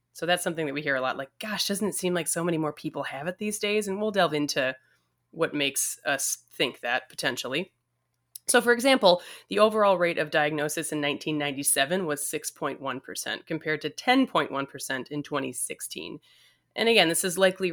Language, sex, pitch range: English, female, 145-195 Hz